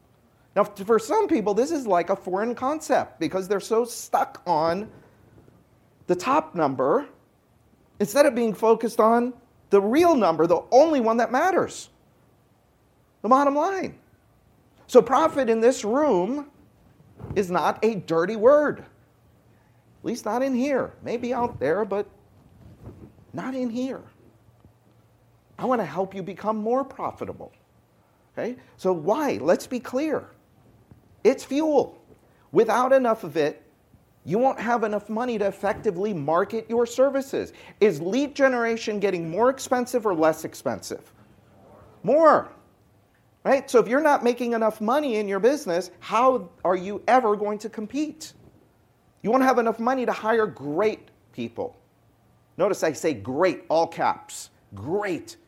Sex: male